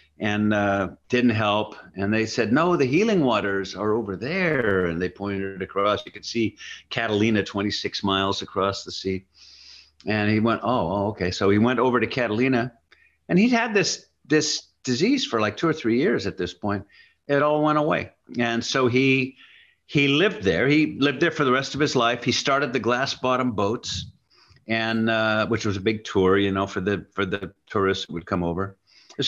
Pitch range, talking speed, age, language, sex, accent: 105-130 Hz, 200 wpm, 50-69, English, male, American